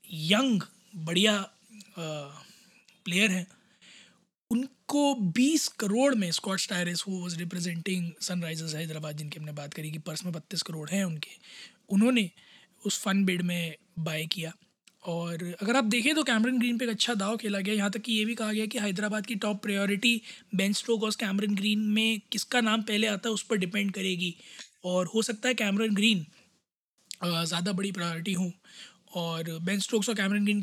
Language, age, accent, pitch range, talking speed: Hindi, 20-39, native, 185-220 Hz, 170 wpm